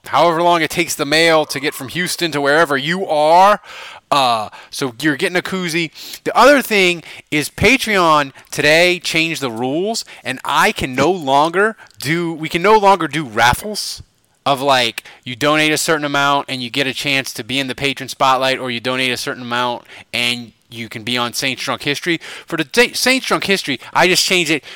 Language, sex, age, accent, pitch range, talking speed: English, male, 30-49, American, 135-180 Hz, 200 wpm